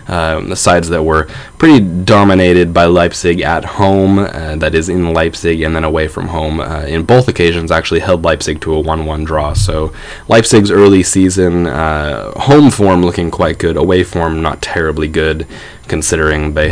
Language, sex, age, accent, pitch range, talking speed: English, male, 10-29, American, 80-95 Hz, 175 wpm